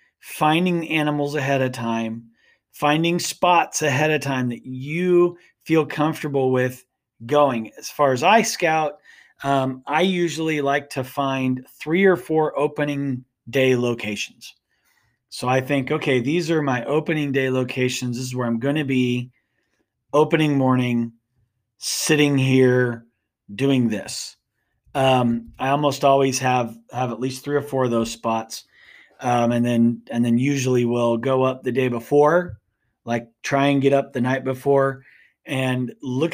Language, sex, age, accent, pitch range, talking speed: English, male, 30-49, American, 120-150 Hz, 150 wpm